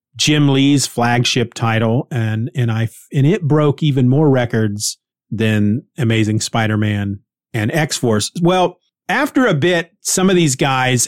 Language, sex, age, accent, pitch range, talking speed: English, male, 30-49, American, 125-175 Hz, 145 wpm